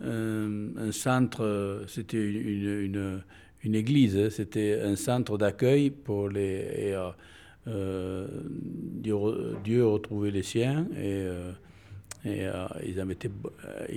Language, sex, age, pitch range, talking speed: French, male, 60-79, 95-120 Hz, 110 wpm